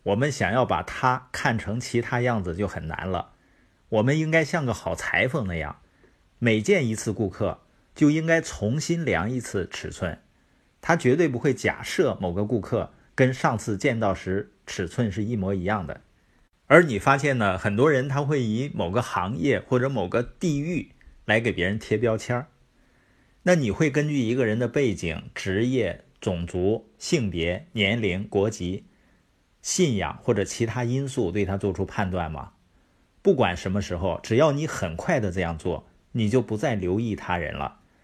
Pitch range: 95-130 Hz